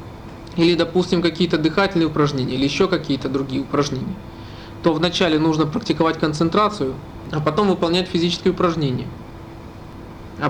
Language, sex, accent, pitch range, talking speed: Russian, male, native, 130-175 Hz, 120 wpm